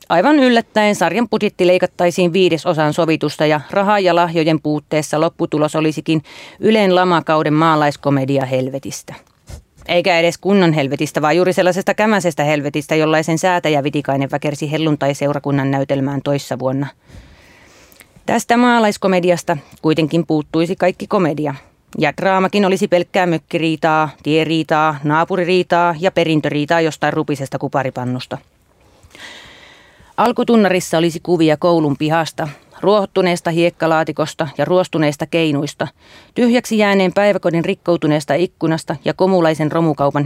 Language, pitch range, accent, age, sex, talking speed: Finnish, 150-180 Hz, native, 30-49, female, 105 wpm